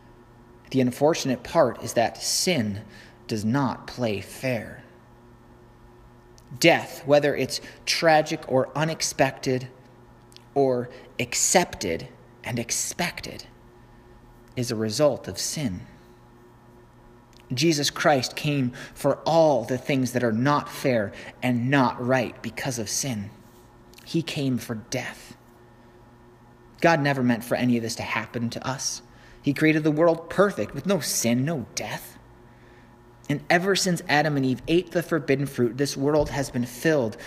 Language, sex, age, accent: English, male, 30-49, American